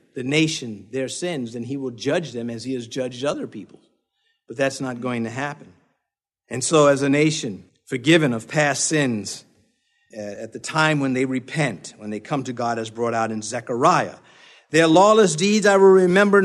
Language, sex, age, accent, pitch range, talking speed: English, male, 50-69, American, 130-190 Hz, 195 wpm